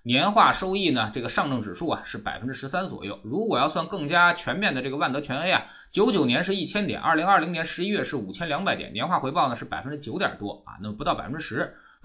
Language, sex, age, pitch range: Chinese, male, 20-39, 105-175 Hz